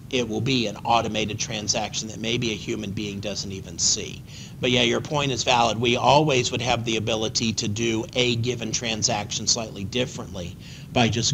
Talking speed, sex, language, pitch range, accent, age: 185 wpm, male, English, 110-150 Hz, American, 40-59